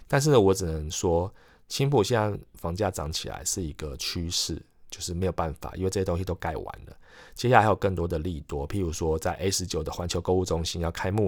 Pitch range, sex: 80-100 Hz, male